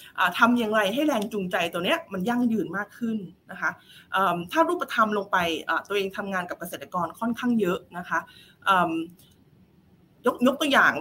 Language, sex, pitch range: Thai, female, 185-245 Hz